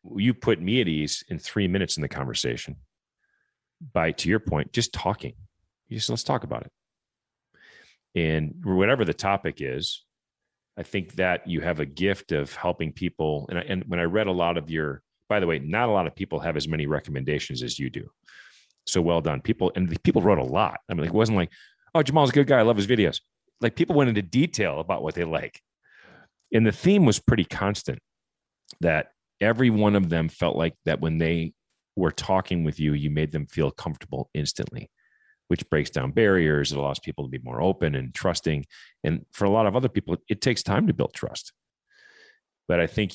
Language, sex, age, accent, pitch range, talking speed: English, male, 40-59, American, 80-100 Hz, 210 wpm